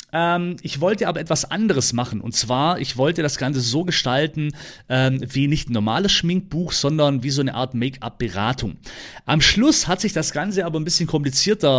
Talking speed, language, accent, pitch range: 190 wpm, German, German, 130-180 Hz